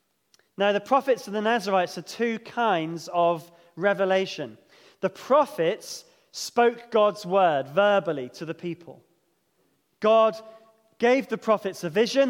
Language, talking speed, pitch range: English, 125 wpm, 175-225 Hz